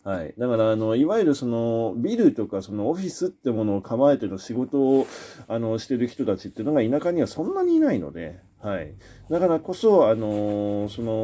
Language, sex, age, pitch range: Japanese, male, 40-59, 95-145 Hz